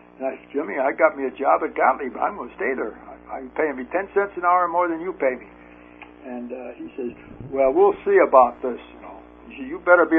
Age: 60-79